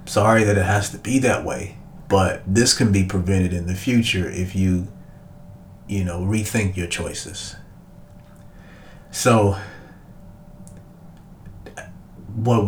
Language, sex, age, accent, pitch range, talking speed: English, male, 30-49, American, 95-110 Hz, 120 wpm